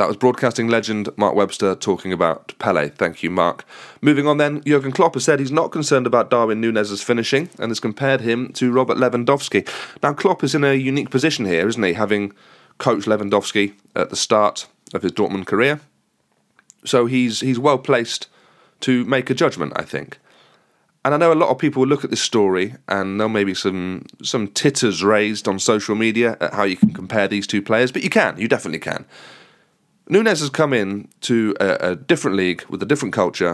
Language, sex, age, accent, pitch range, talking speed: English, male, 30-49, British, 105-150 Hz, 205 wpm